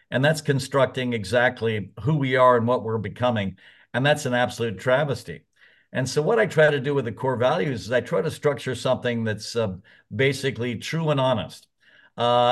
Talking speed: 190 wpm